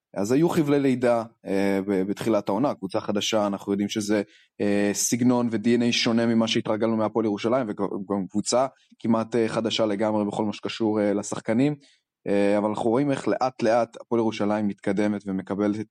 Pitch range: 105-125 Hz